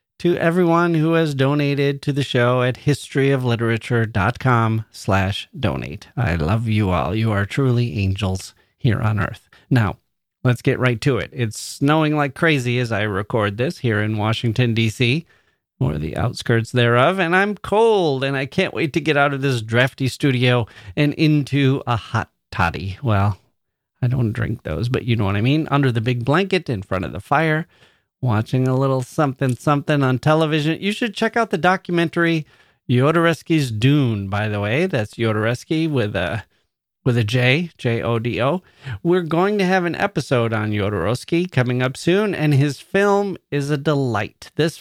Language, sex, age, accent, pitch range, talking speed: English, male, 40-59, American, 115-155 Hz, 170 wpm